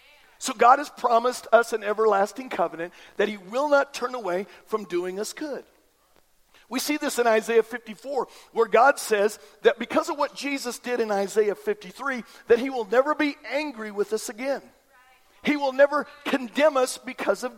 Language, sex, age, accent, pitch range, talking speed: English, male, 50-69, American, 210-275 Hz, 180 wpm